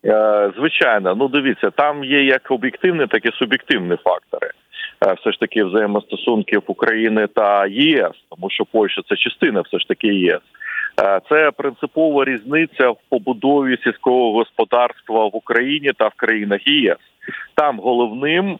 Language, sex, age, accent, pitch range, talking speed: Ukrainian, male, 40-59, native, 110-145 Hz, 140 wpm